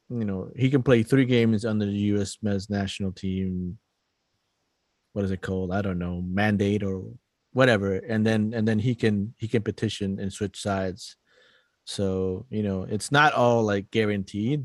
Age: 30-49